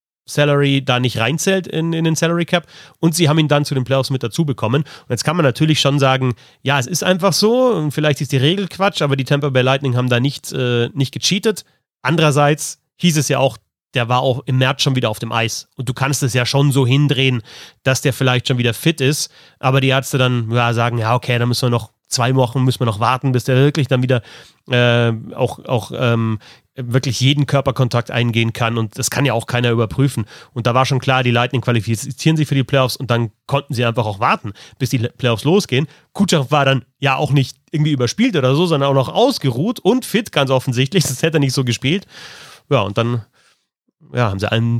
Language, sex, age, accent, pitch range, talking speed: German, male, 30-49, German, 120-145 Hz, 230 wpm